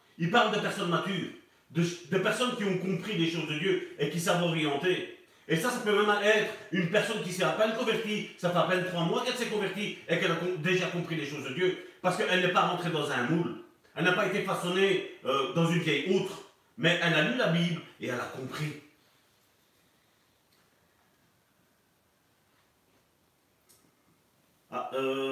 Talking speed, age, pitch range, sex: 190 wpm, 40-59, 170-230 Hz, male